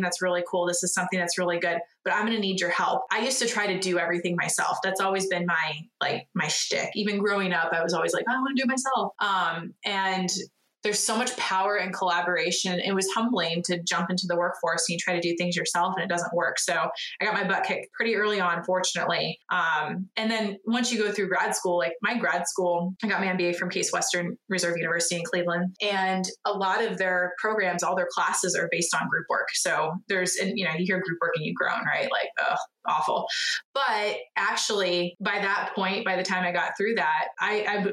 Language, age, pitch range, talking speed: English, 20-39, 175-210 Hz, 235 wpm